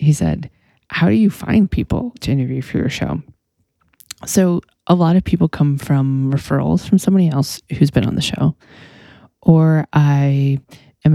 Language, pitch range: English, 140-185 Hz